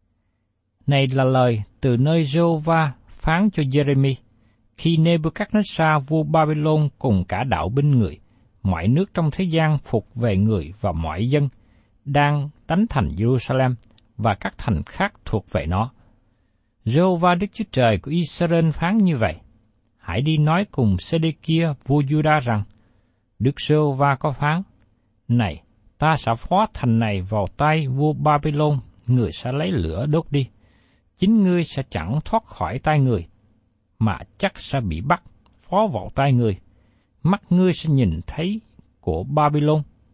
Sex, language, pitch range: male, Vietnamese, 105-155 Hz